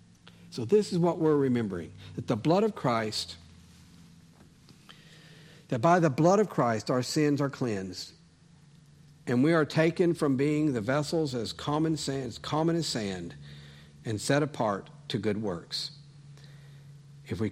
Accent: American